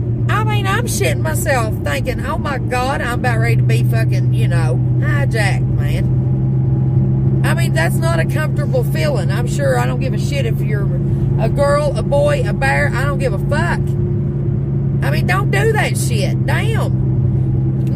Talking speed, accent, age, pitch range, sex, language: 175 wpm, American, 30-49, 120-130 Hz, female, English